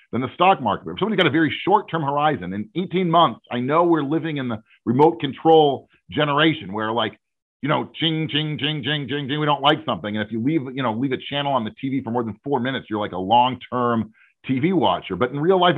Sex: male